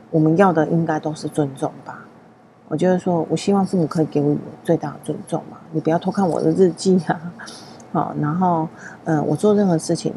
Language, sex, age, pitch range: Chinese, female, 40-59, 155-195 Hz